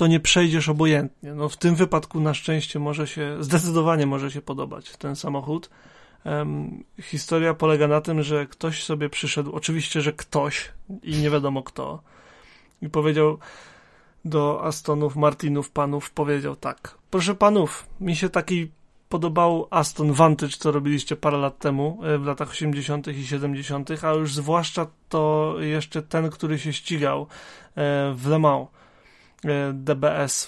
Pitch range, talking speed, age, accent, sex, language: 145-170 Hz, 145 wpm, 30-49, native, male, Polish